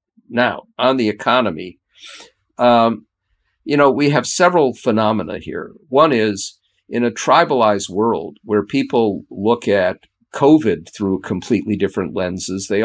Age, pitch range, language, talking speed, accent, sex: 50-69, 105-135 Hz, English, 130 wpm, American, male